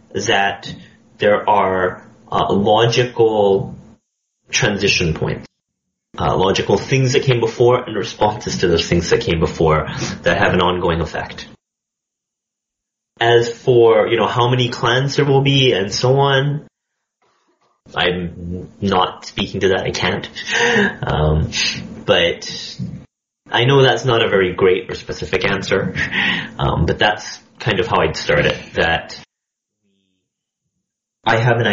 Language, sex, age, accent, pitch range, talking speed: English, male, 30-49, American, 95-125 Hz, 135 wpm